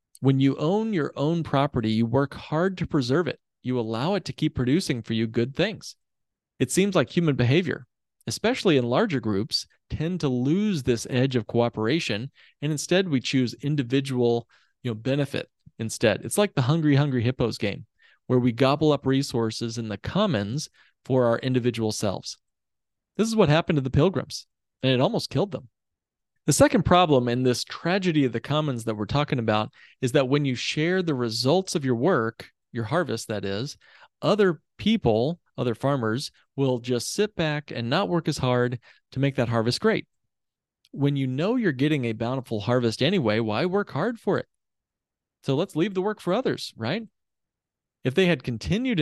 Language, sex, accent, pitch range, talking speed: English, male, American, 120-160 Hz, 180 wpm